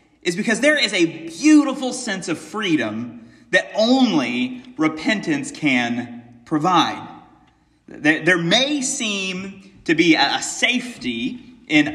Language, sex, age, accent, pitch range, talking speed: English, male, 30-49, American, 175-275 Hz, 110 wpm